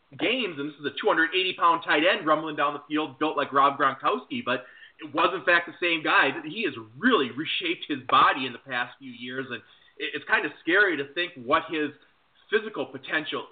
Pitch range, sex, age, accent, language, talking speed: 135-175 Hz, male, 20-39, American, English, 205 wpm